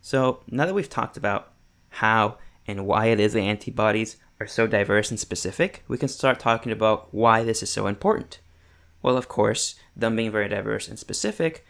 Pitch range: 105-130 Hz